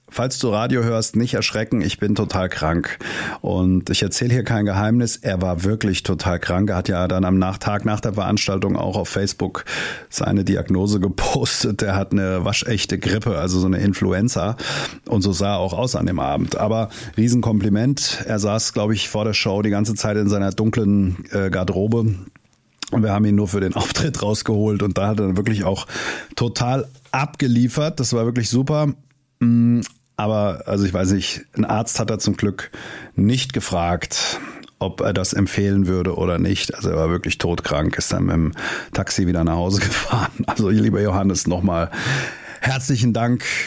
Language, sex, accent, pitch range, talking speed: German, male, German, 100-120 Hz, 185 wpm